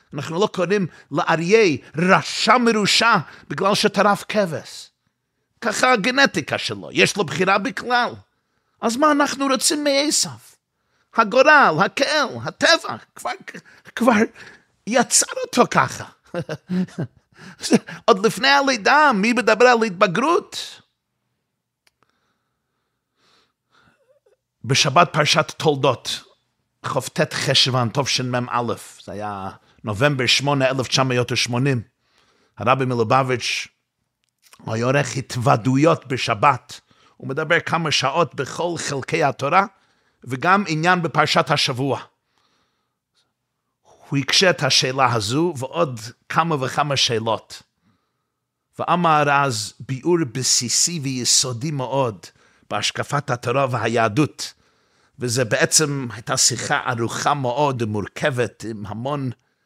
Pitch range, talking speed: 130-200 Hz, 95 wpm